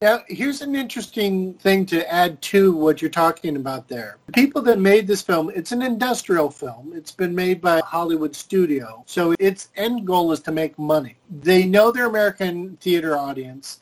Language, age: English, 50-69